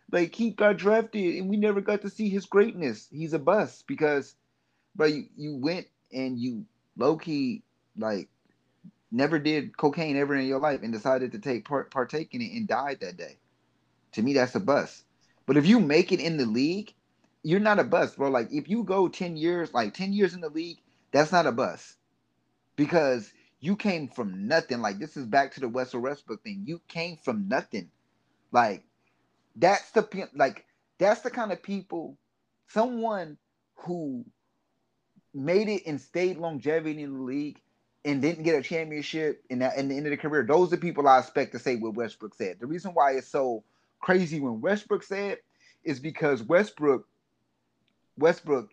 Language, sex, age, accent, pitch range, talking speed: English, male, 30-49, American, 135-195 Hz, 185 wpm